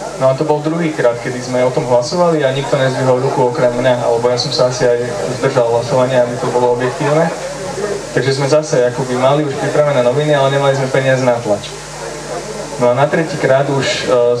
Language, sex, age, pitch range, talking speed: Slovak, male, 20-39, 125-150 Hz, 205 wpm